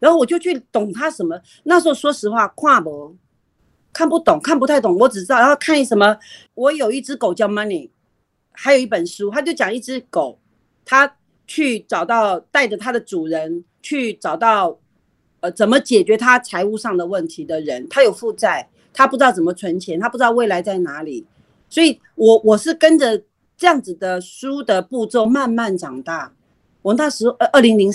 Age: 40-59